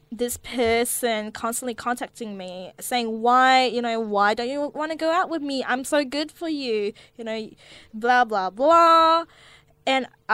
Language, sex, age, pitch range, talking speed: English, female, 10-29, 185-255 Hz, 170 wpm